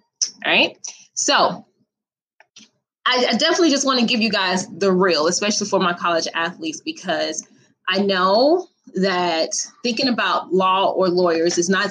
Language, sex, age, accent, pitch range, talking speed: English, female, 20-39, American, 180-230 Hz, 150 wpm